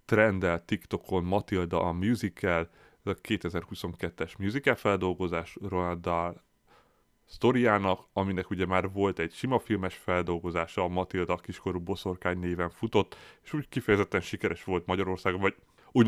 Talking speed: 130 wpm